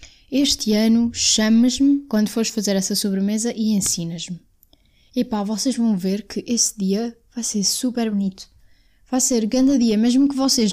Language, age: Portuguese, 10-29